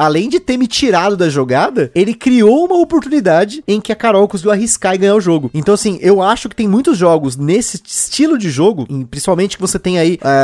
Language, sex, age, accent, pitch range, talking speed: Portuguese, male, 20-39, Brazilian, 175-230 Hz, 235 wpm